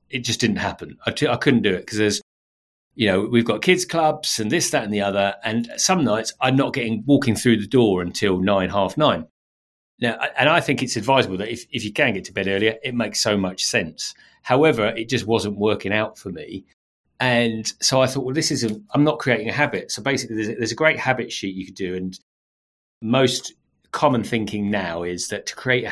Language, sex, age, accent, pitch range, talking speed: English, male, 40-59, British, 95-130 Hz, 225 wpm